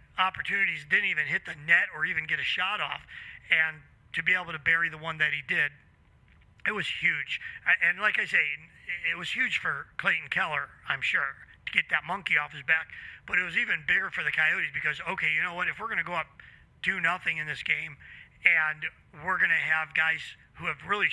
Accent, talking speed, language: American, 220 wpm, English